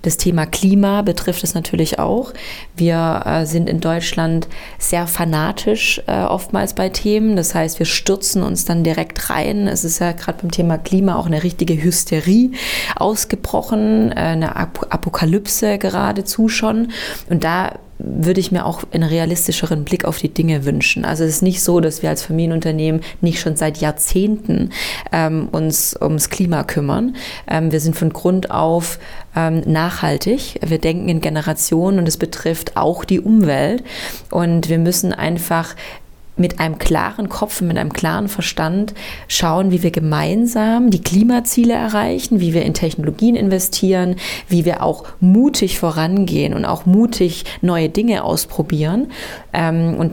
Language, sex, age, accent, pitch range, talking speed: German, female, 20-39, German, 165-195 Hz, 150 wpm